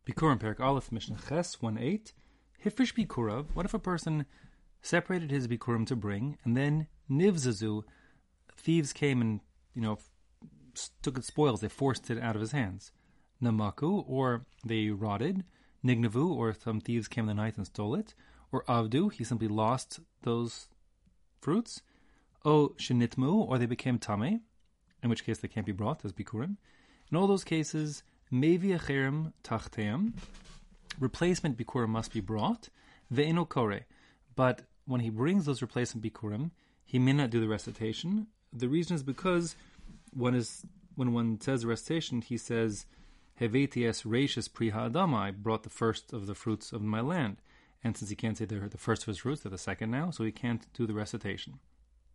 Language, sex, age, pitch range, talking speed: English, male, 30-49, 110-150 Hz, 155 wpm